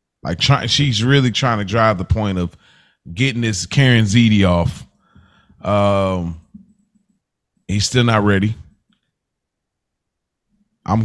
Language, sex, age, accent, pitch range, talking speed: English, male, 30-49, American, 95-120 Hz, 115 wpm